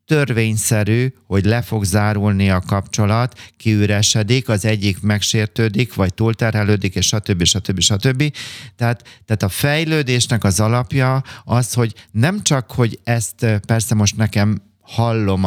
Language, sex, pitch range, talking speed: Hungarian, male, 100-125 Hz, 130 wpm